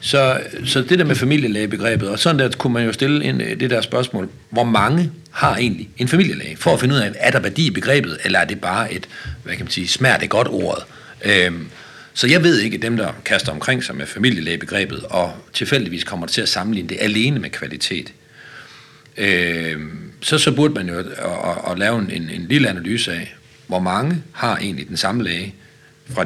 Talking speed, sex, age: 205 wpm, male, 60-79